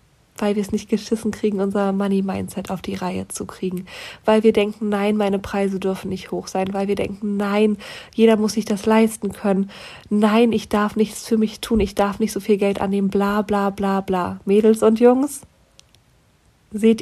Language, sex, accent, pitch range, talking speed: German, female, German, 195-225 Hz, 195 wpm